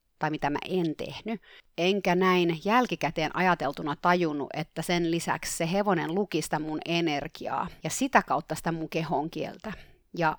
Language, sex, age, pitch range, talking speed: Finnish, female, 30-49, 155-195 Hz, 155 wpm